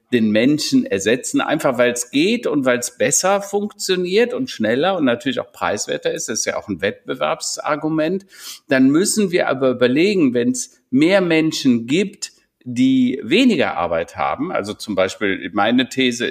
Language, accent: German, German